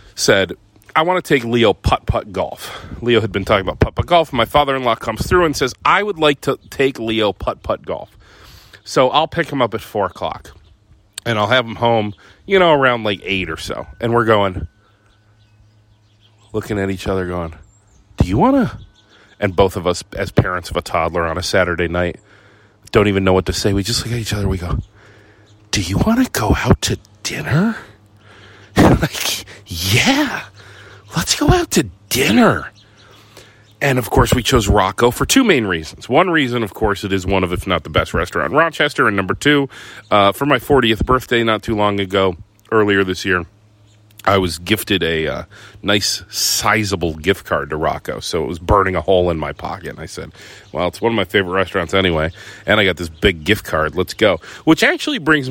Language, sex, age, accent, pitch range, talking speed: English, male, 40-59, American, 95-120 Hz, 205 wpm